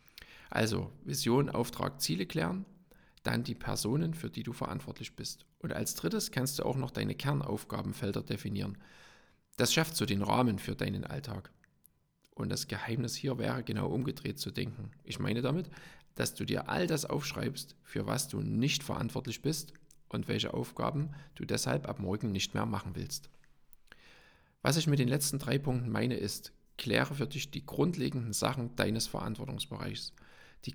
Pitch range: 110-145 Hz